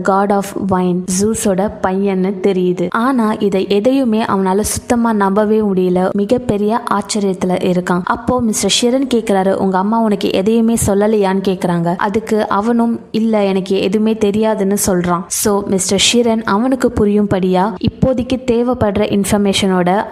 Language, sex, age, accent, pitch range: Tamil, female, 20-39, native, 190-230 Hz